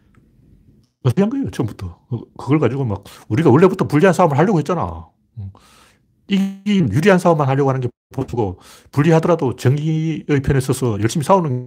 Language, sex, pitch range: Korean, male, 110-155 Hz